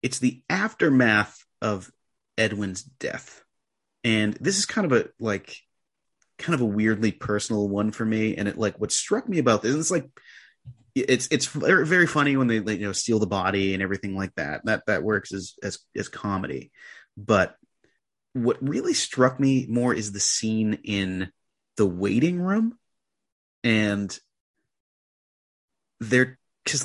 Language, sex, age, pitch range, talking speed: English, male, 30-49, 105-145 Hz, 150 wpm